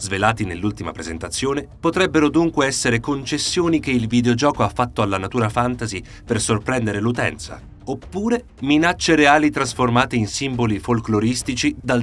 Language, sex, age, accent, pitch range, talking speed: Italian, male, 40-59, native, 100-130 Hz, 130 wpm